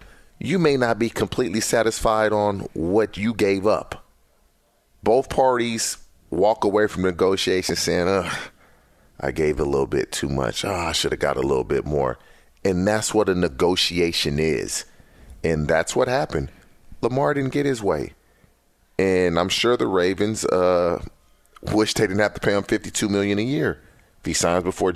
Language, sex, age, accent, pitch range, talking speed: English, male, 30-49, American, 80-105 Hz, 170 wpm